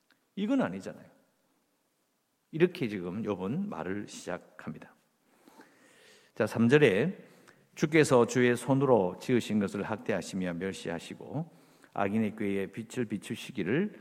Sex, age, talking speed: male, 50-69, 85 wpm